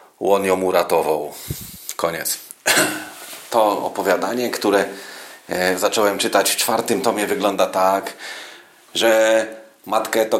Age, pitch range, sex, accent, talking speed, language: 40-59, 90-110 Hz, male, native, 100 wpm, Polish